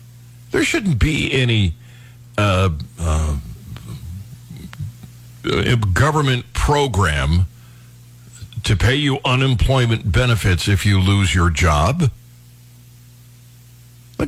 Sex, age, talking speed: male, 60-79, 80 wpm